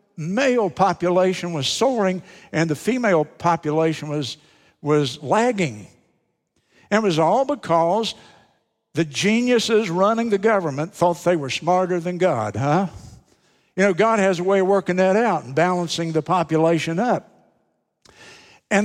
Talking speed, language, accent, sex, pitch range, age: 140 wpm, English, American, male, 150-200 Hz, 60-79